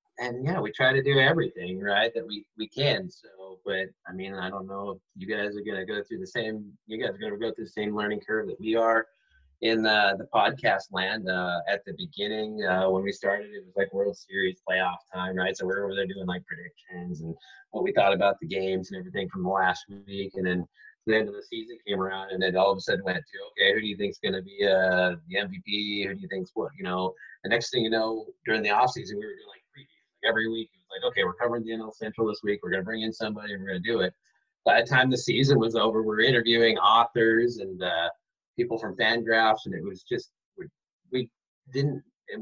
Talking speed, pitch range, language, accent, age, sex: 250 wpm, 95-130 Hz, English, American, 30-49, male